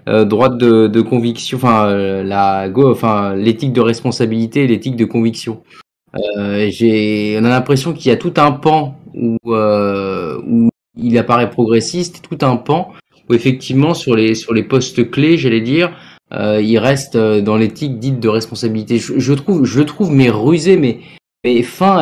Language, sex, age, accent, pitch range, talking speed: French, male, 20-39, French, 110-135 Hz, 170 wpm